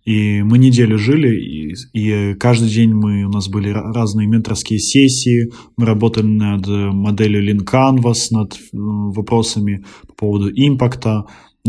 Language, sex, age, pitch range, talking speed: Russian, male, 20-39, 110-130 Hz, 135 wpm